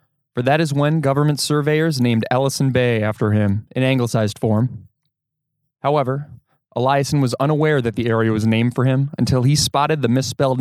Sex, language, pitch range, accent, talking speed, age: male, English, 120-150 Hz, American, 170 wpm, 20-39